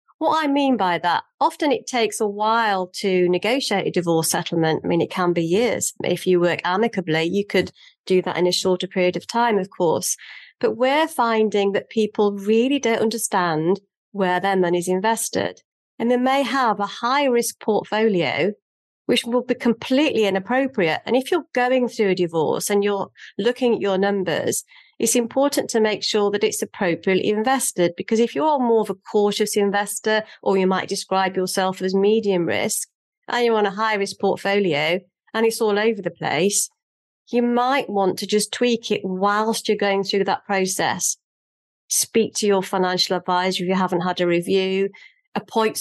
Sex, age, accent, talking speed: female, 40-59, British, 180 wpm